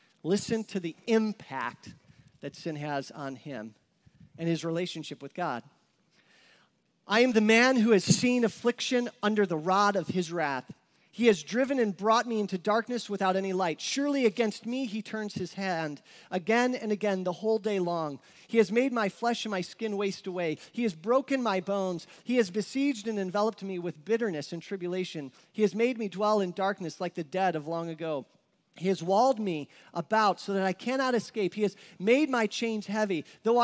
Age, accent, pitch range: 40-59, American, 180-230 Hz